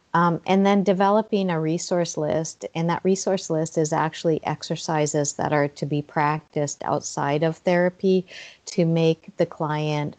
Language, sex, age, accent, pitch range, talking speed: English, female, 40-59, American, 150-170 Hz, 155 wpm